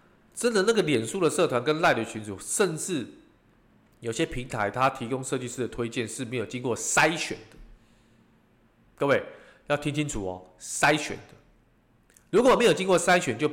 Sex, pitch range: male, 115-155 Hz